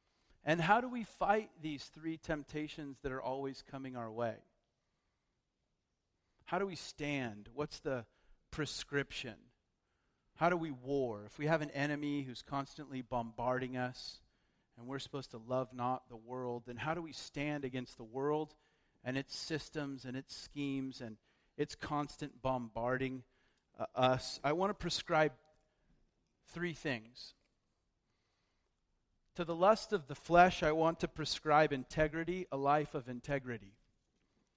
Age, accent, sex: 40-59, American, male